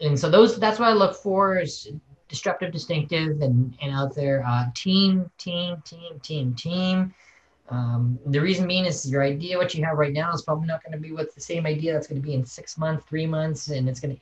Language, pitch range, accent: English, 135-165 Hz, American